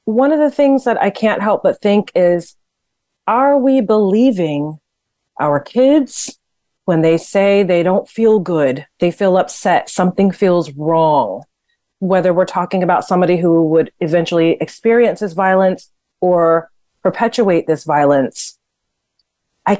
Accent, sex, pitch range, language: American, female, 165-215 Hz, English